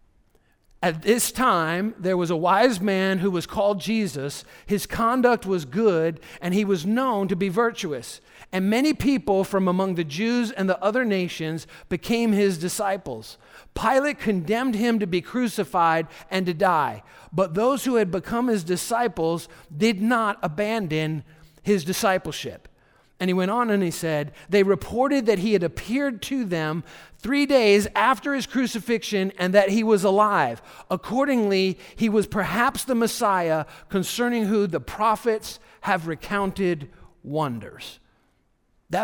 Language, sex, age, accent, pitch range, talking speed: English, male, 50-69, American, 155-215 Hz, 150 wpm